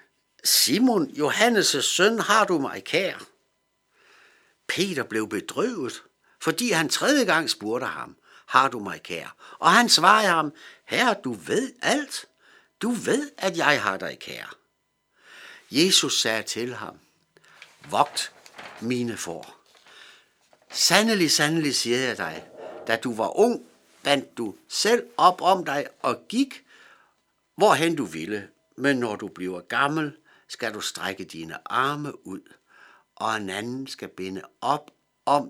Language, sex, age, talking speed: Danish, male, 60-79, 135 wpm